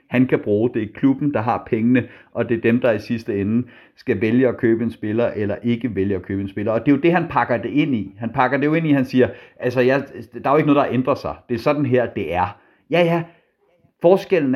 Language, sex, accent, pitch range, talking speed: Danish, male, native, 120-155 Hz, 275 wpm